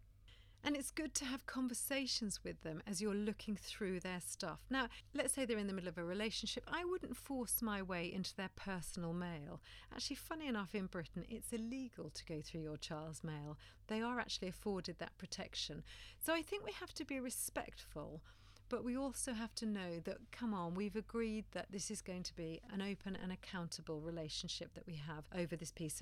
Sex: female